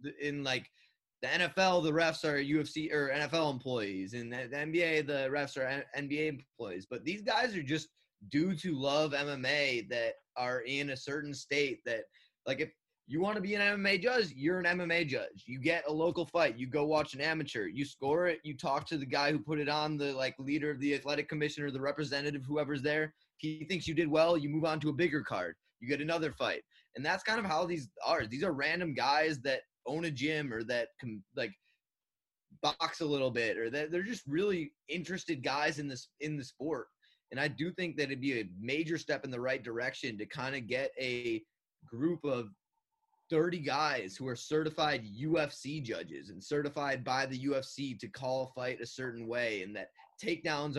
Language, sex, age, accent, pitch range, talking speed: English, male, 20-39, American, 130-160 Hz, 205 wpm